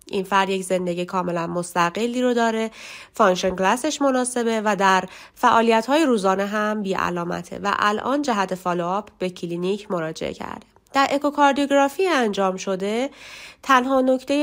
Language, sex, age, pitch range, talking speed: Persian, female, 30-49, 185-245 Hz, 125 wpm